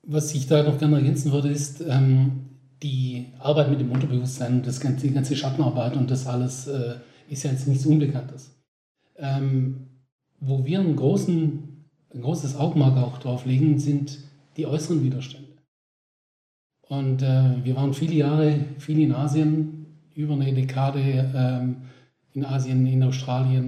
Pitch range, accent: 130-150 Hz, German